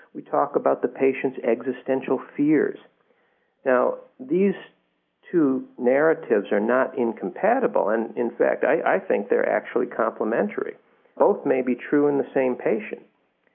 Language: English